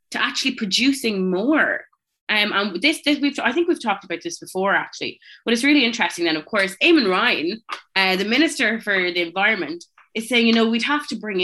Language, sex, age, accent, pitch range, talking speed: English, female, 20-39, Irish, 185-295 Hz, 195 wpm